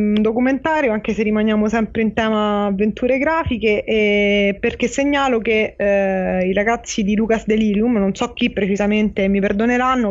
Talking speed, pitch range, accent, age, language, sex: 150 wpm, 205-235 Hz, native, 20-39, Italian, female